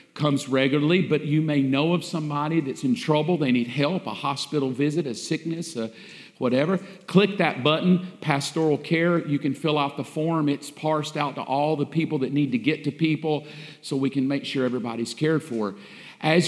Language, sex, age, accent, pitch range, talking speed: English, male, 50-69, American, 145-175 Hz, 195 wpm